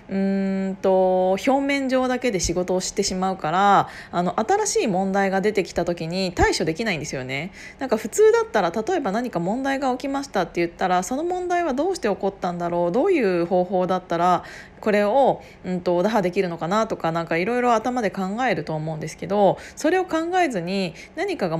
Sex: female